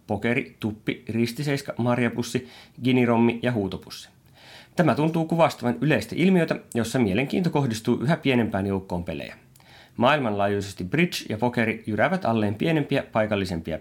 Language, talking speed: Finnish, 115 wpm